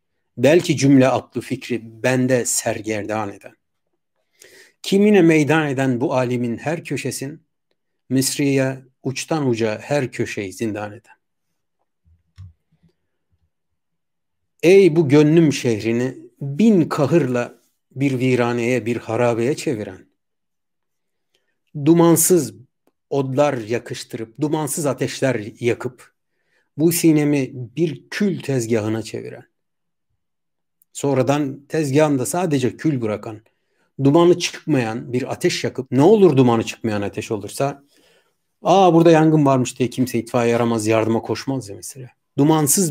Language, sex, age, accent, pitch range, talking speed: Turkish, male, 60-79, native, 115-155 Hz, 100 wpm